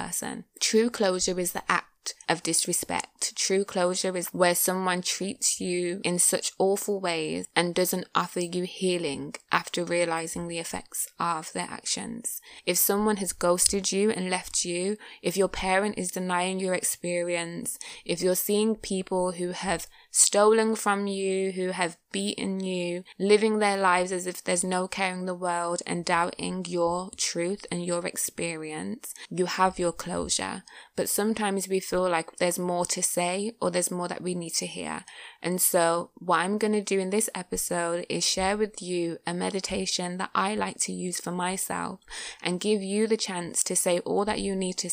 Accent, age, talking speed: British, 20-39, 175 wpm